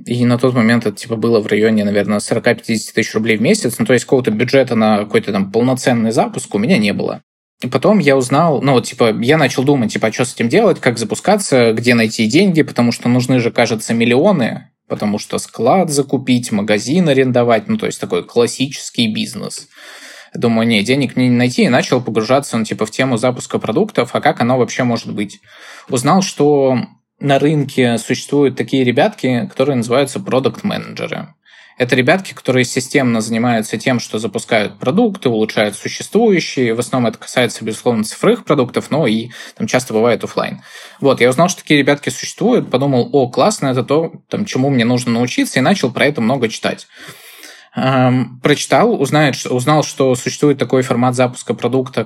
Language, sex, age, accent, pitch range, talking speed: Russian, male, 20-39, native, 115-140 Hz, 180 wpm